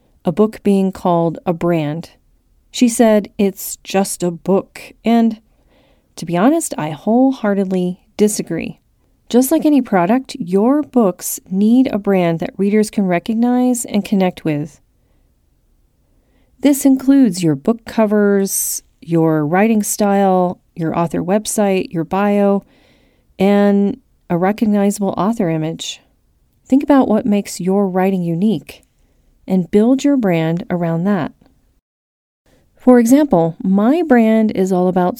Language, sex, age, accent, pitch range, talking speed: English, female, 40-59, American, 180-225 Hz, 125 wpm